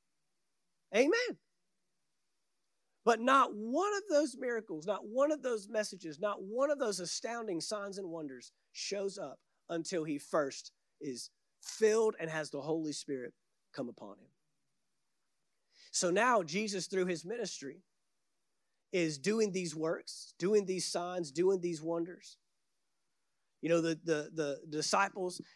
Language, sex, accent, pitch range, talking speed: English, male, American, 170-225 Hz, 130 wpm